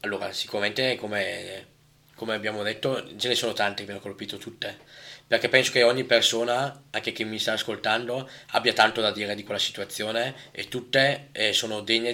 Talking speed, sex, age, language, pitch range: 185 wpm, male, 10-29, Italian, 110-135 Hz